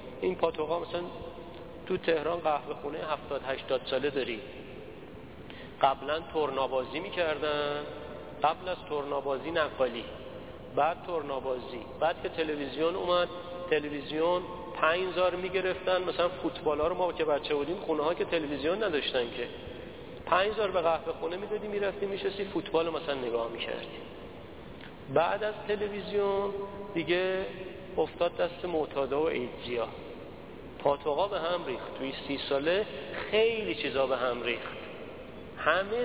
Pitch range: 155-195 Hz